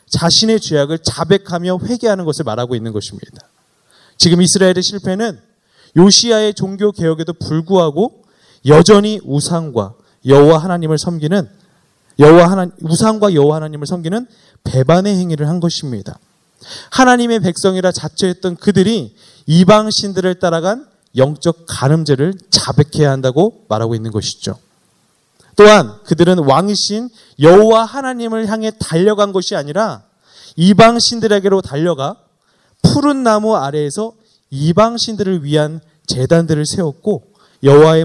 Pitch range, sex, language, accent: 150-205 Hz, male, Korean, native